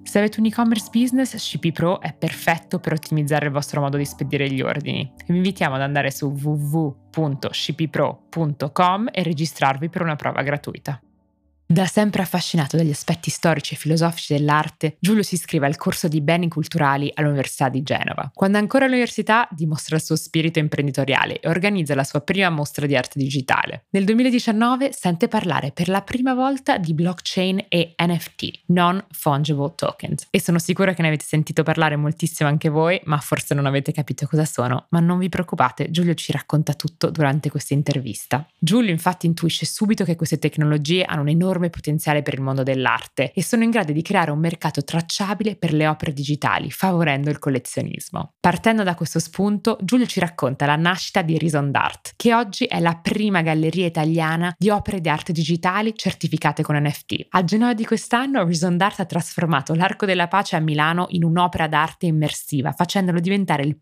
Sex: female